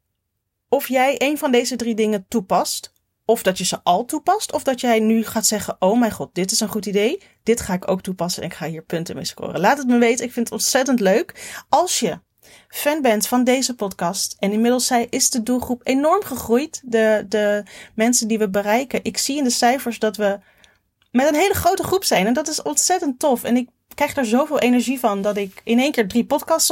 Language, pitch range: Dutch, 205-260 Hz